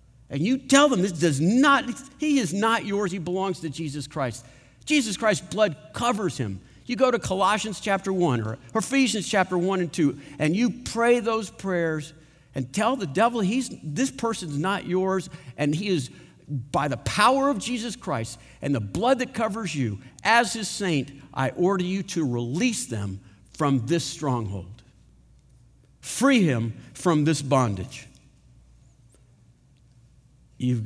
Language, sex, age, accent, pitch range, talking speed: English, male, 50-69, American, 120-175 Hz, 155 wpm